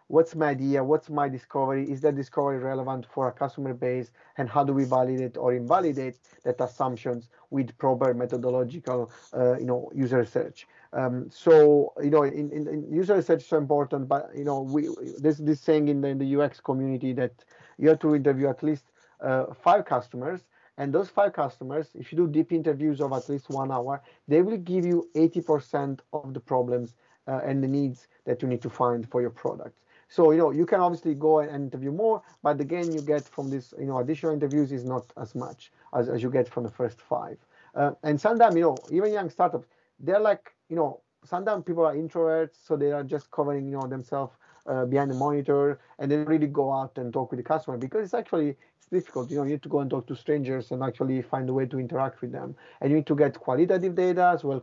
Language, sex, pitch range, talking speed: English, male, 130-155 Hz, 225 wpm